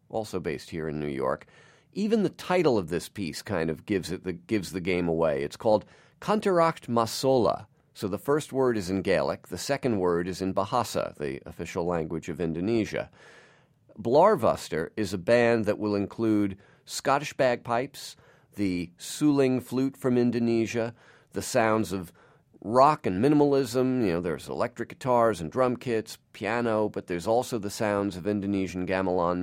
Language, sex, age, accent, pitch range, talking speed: English, male, 40-59, American, 95-130 Hz, 165 wpm